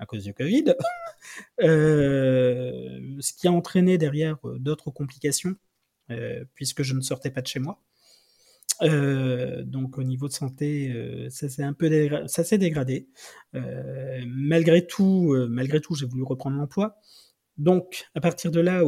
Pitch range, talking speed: 135-185 Hz, 160 wpm